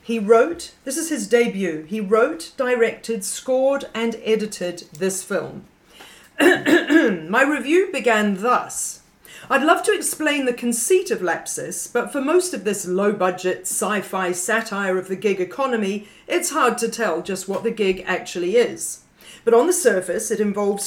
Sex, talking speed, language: female, 155 wpm, English